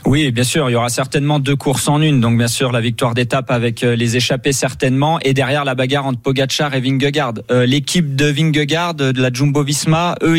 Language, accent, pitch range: French, French, 130-150 Hz